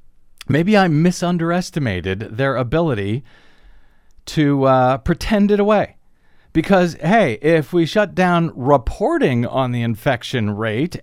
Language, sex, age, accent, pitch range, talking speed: English, male, 50-69, American, 125-180 Hz, 115 wpm